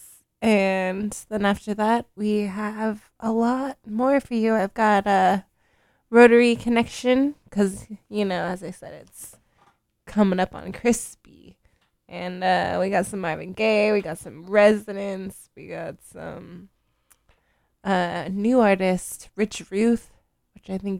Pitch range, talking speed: 185-215 Hz, 140 wpm